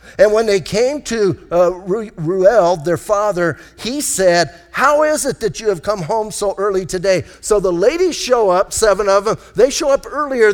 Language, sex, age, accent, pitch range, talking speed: English, male, 50-69, American, 165-215 Hz, 195 wpm